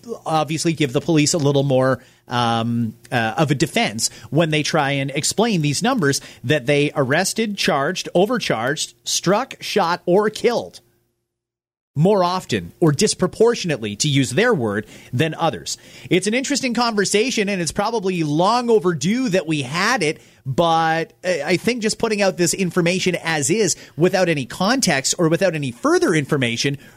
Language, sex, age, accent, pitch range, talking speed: English, male, 30-49, American, 130-190 Hz, 155 wpm